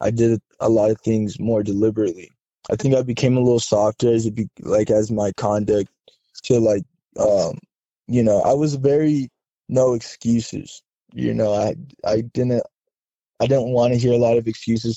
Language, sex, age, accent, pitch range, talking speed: English, male, 20-39, American, 110-125 Hz, 185 wpm